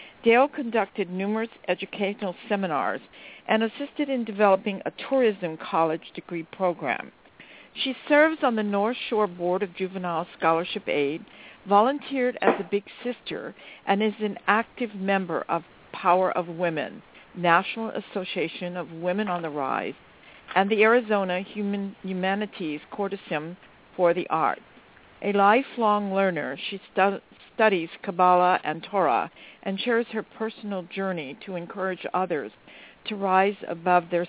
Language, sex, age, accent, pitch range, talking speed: English, female, 50-69, American, 175-215 Hz, 130 wpm